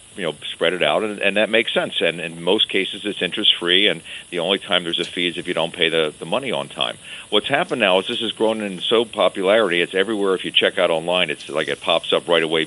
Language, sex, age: English, male, 50-69